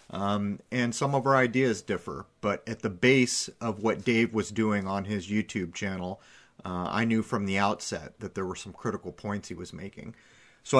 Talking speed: 200 wpm